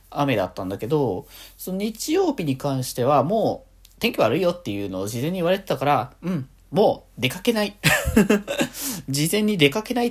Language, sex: Japanese, male